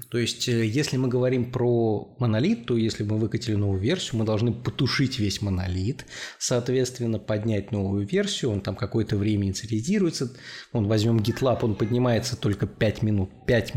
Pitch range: 110-130 Hz